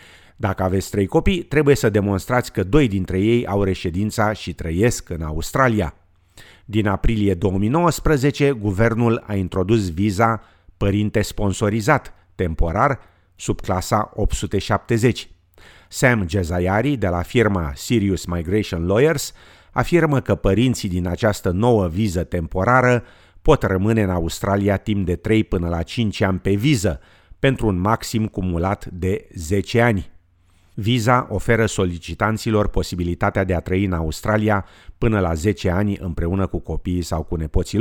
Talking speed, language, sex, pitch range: 135 wpm, Romanian, male, 90-115 Hz